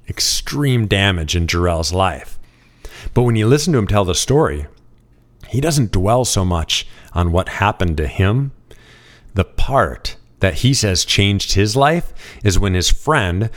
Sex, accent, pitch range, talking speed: male, American, 90-120 Hz, 160 wpm